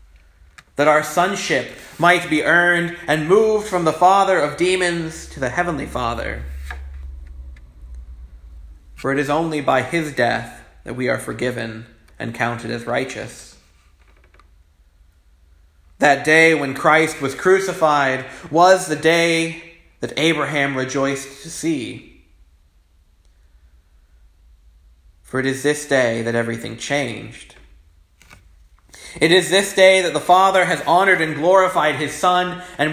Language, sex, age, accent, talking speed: English, male, 30-49, American, 125 wpm